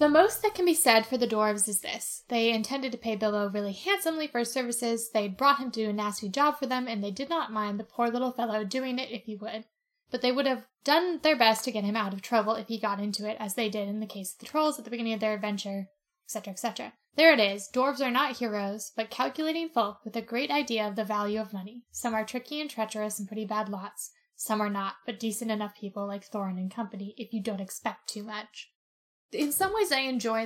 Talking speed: 255 wpm